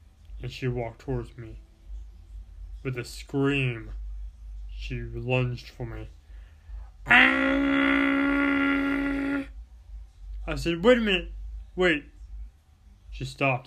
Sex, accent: male, American